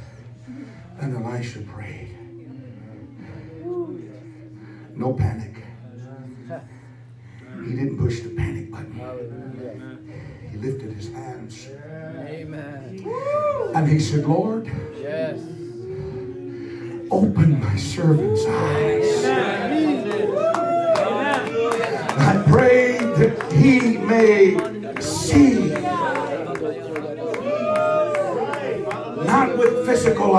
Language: English